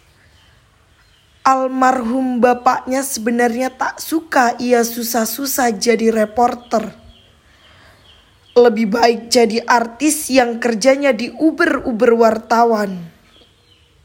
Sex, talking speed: female, 75 wpm